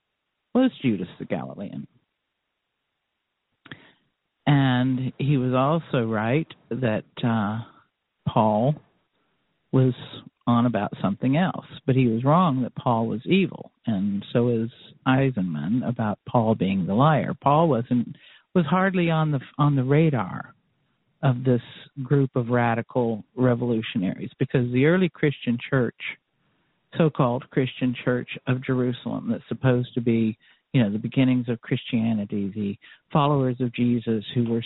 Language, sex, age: English, male, 50-69